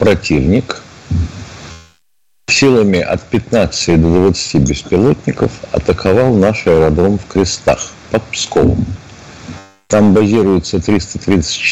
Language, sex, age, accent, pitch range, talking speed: Russian, male, 50-69, native, 80-115 Hz, 80 wpm